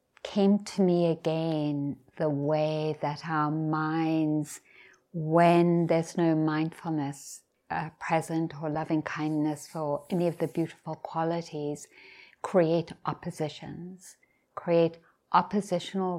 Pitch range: 155-185 Hz